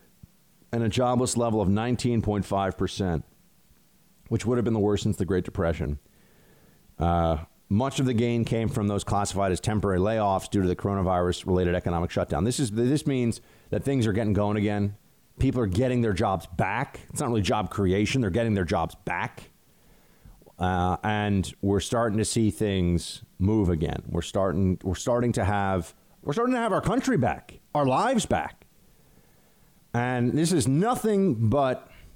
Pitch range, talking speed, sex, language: 95-120 Hz, 170 wpm, male, English